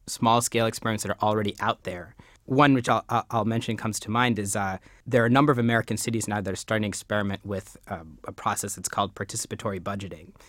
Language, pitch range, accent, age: English, 105-120 Hz, American, 30-49